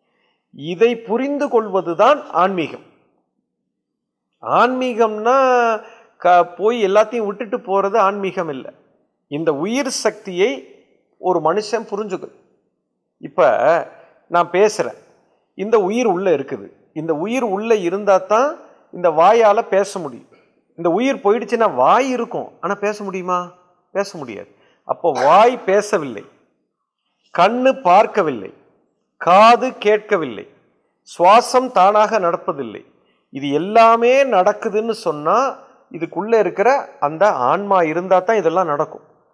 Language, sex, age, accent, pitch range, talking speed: Tamil, male, 50-69, native, 175-230 Hz, 100 wpm